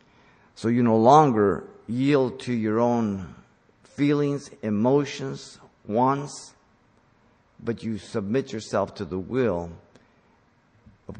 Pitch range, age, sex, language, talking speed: 110-145 Hz, 50-69, male, English, 100 wpm